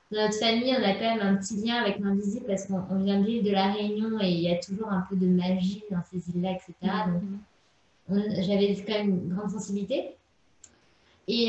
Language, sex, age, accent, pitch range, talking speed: French, female, 20-39, French, 195-250 Hz, 220 wpm